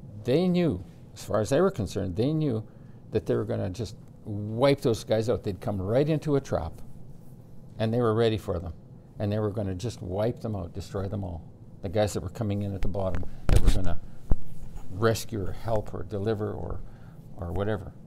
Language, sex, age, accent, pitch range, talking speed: English, male, 60-79, American, 100-130 Hz, 215 wpm